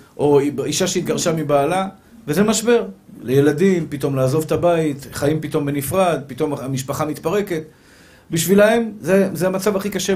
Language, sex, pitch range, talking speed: Hebrew, male, 140-195 Hz, 135 wpm